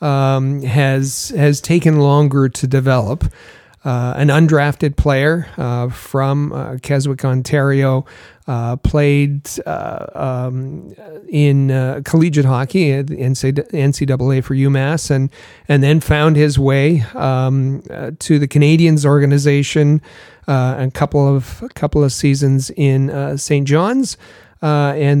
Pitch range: 130-150 Hz